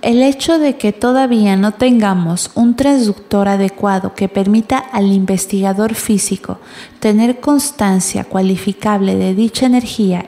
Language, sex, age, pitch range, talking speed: Spanish, female, 30-49, 200-235 Hz, 125 wpm